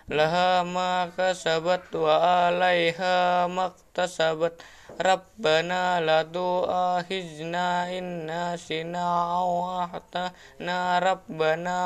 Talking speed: 70 wpm